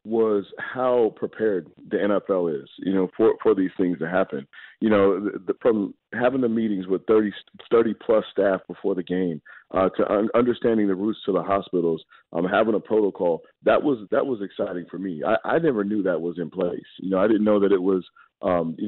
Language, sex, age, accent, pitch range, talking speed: English, male, 40-59, American, 90-105 Hz, 215 wpm